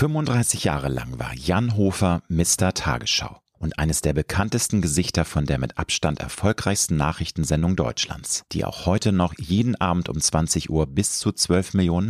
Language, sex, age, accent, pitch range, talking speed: German, male, 40-59, German, 75-95 Hz, 165 wpm